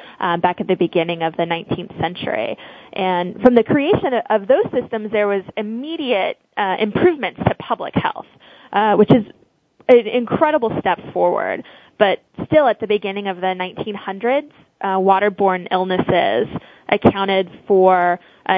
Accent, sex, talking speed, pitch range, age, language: American, female, 140 wpm, 195-245 Hz, 20-39, English